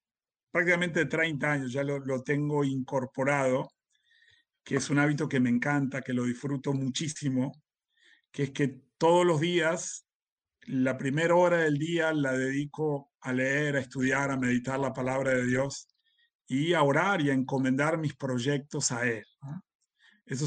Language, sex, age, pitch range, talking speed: Spanish, male, 40-59, 135-165 Hz, 155 wpm